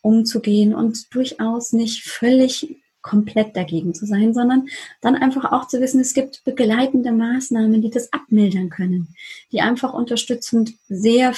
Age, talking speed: 30-49, 140 wpm